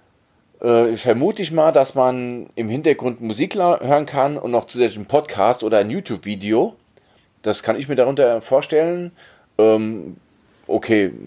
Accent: German